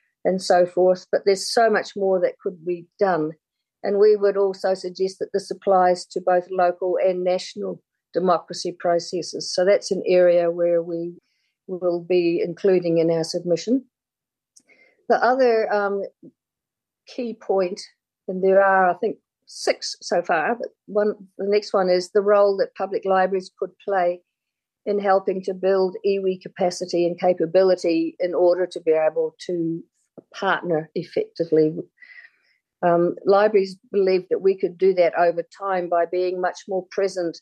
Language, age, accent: English, 50-69, Australian